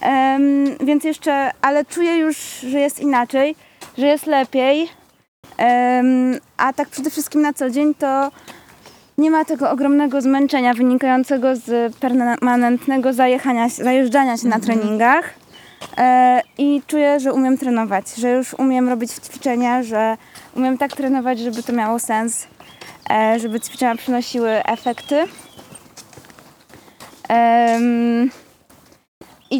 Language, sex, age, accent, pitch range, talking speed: Polish, female, 20-39, native, 245-280 Hz, 110 wpm